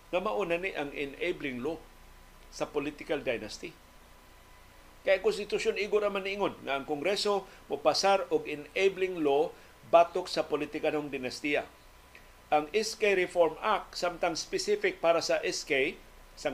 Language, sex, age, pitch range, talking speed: Filipino, male, 50-69, 145-195 Hz, 125 wpm